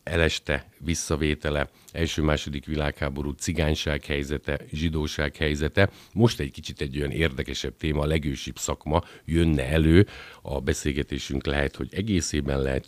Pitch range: 70-80 Hz